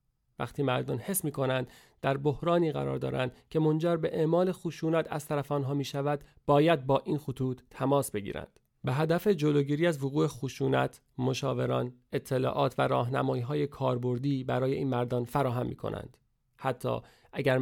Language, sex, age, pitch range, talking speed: Persian, male, 40-59, 125-145 Hz, 150 wpm